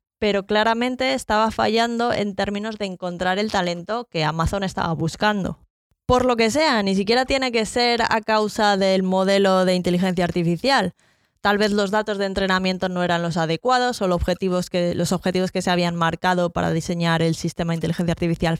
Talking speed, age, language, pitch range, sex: 185 wpm, 20-39, Spanish, 180-225 Hz, female